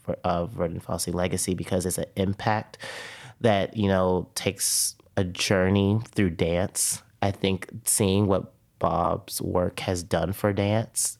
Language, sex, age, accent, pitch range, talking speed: English, male, 30-49, American, 90-105 Hz, 145 wpm